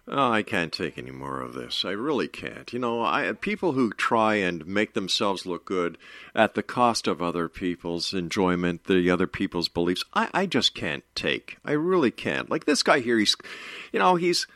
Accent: American